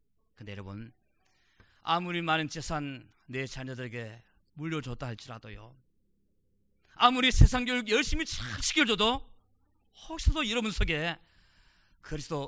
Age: 40-59